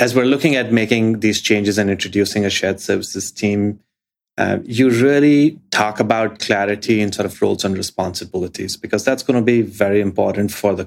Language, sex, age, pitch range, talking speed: English, male, 30-49, 100-115 Hz, 190 wpm